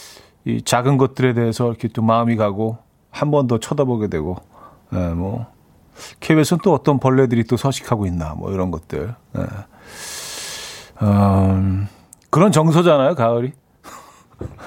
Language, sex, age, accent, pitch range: Korean, male, 40-59, native, 105-145 Hz